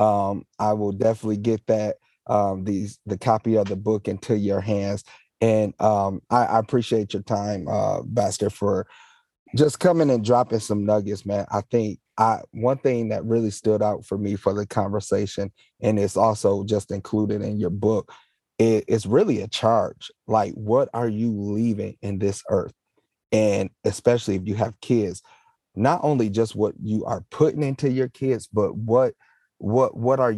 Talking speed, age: 175 wpm, 30-49